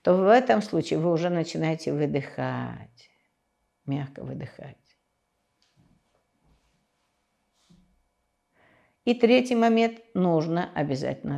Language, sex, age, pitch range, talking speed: Russian, female, 50-69, 120-190 Hz, 80 wpm